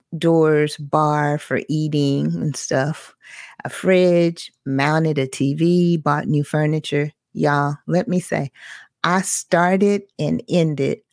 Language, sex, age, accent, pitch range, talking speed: English, female, 40-59, American, 140-175 Hz, 120 wpm